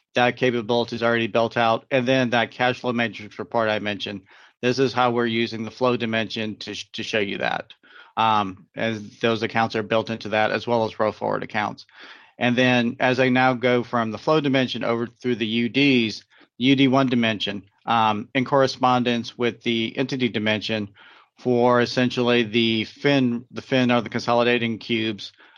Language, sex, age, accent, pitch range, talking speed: English, male, 40-59, American, 115-130 Hz, 175 wpm